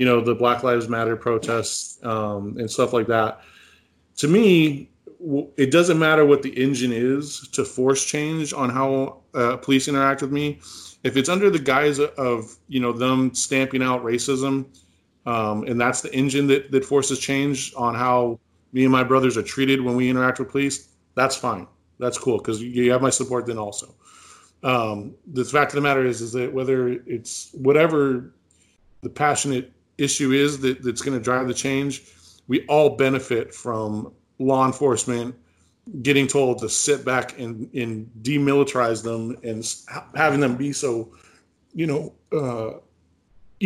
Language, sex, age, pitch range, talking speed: English, male, 30-49, 120-140 Hz, 170 wpm